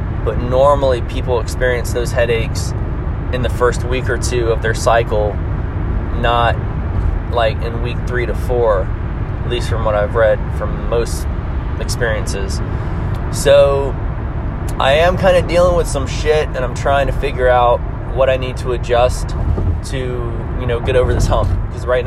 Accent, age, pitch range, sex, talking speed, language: American, 20-39, 100-125 Hz, male, 165 wpm, English